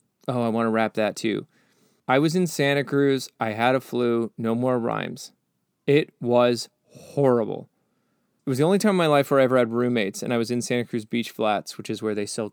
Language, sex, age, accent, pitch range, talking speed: English, male, 20-39, American, 115-145 Hz, 230 wpm